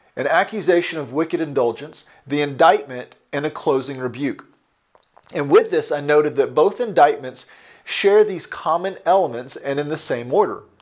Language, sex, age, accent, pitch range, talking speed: English, male, 40-59, American, 135-180 Hz, 155 wpm